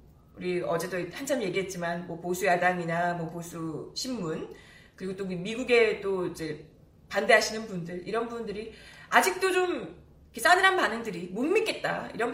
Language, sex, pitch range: Korean, female, 185-290 Hz